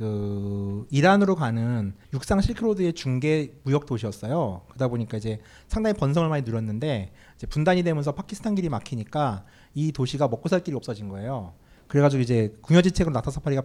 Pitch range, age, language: 110-170 Hz, 30-49, Korean